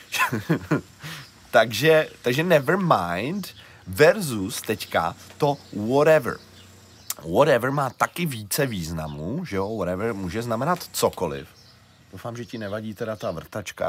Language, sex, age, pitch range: Czech, male, 30-49, 90-125 Hz